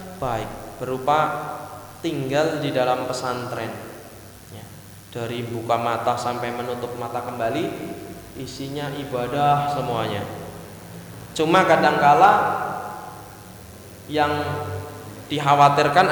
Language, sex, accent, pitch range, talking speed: Indonesian, male, native, 110-165 Hz, 75 wpm